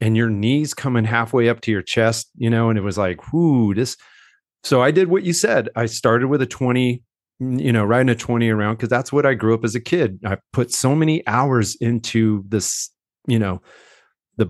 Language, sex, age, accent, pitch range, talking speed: English, male, 40-59, American, 110-130 Hz, 220 wpm